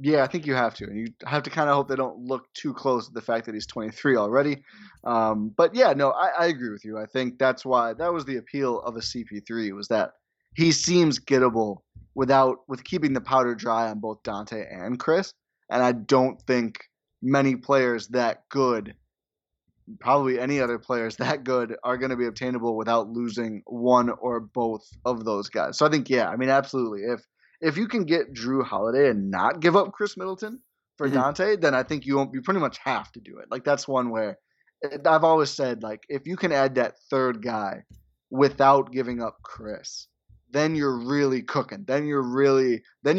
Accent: American